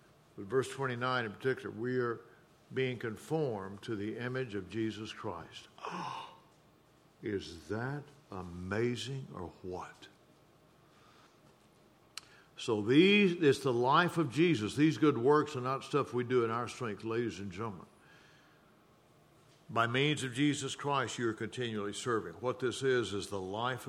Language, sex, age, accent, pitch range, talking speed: English, male, 60-79, American, 115-150 Hz, 140 wpm